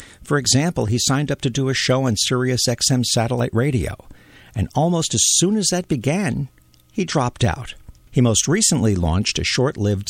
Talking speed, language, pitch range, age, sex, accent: 180 wpm, English, 95-140 Hz, 50-69, male, American